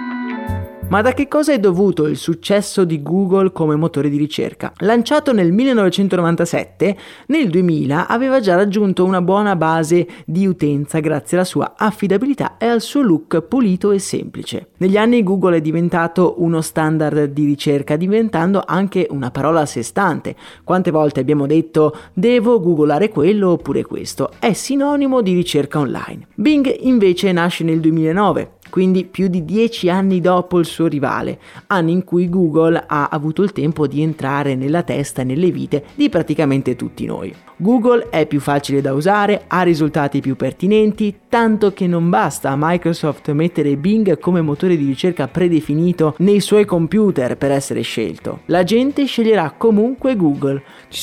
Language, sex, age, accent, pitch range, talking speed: Italian, male, 30-49, native, 150-205 Hz, 160 wpm